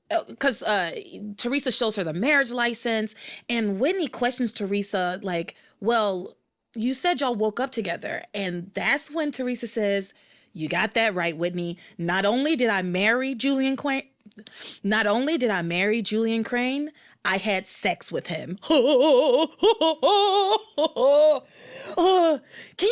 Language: English